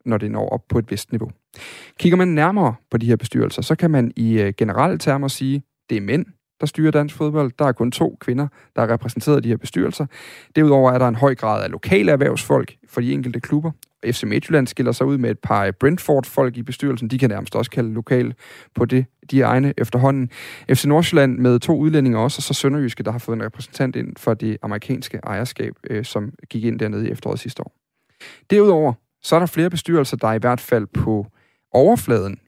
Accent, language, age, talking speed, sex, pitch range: native, Danish, 30-49, 220 wpm, male, 115-150 Hz